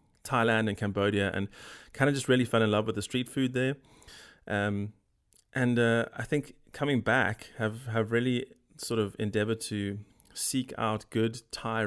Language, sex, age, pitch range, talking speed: English, male, 20-39, 100-120 Hz, 170 wpm